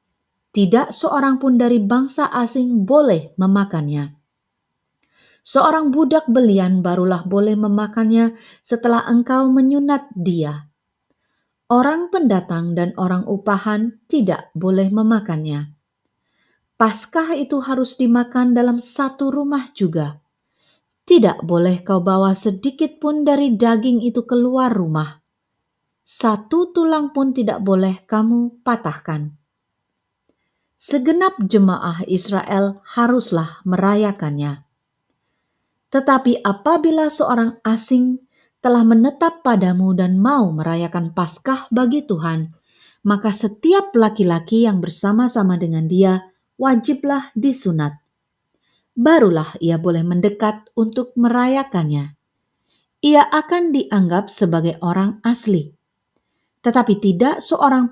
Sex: female